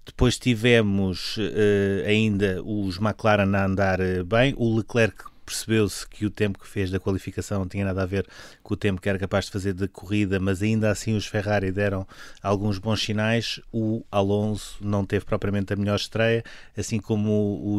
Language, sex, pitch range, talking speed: Portuguese, male, 100-115 Hz, 185 wpm